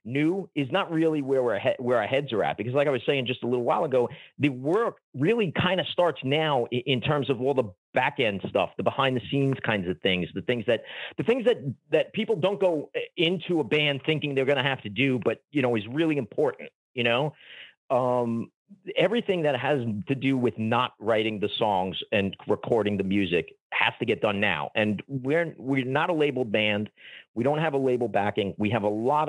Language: English